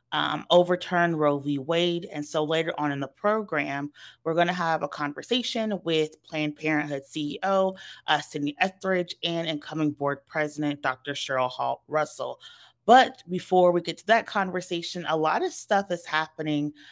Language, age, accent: English, 30-49, American